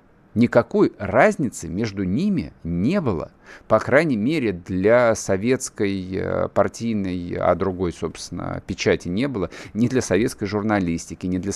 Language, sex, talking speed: Russian, male, 125 wpm